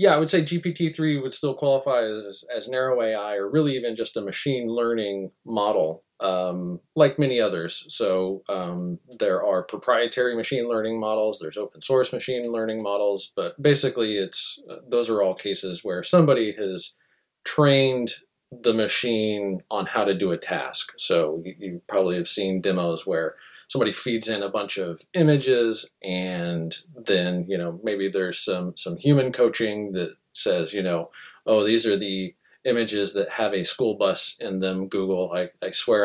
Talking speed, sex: 170 wpm, male